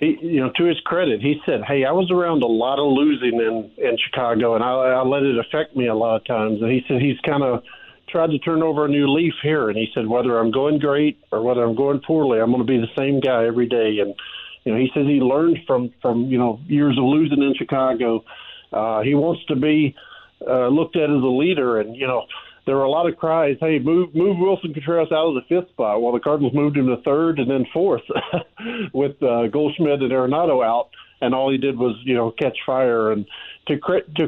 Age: 50-69